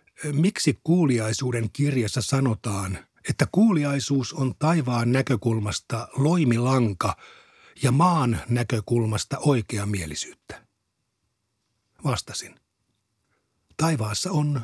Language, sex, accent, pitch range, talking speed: Finnish, male, native, 110-140 Hz, 75 wpm